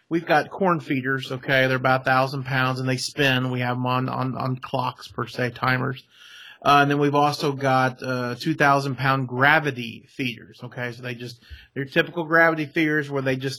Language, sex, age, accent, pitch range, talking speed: English, male, 30-49, American, 125-150 Hz, 195 wpm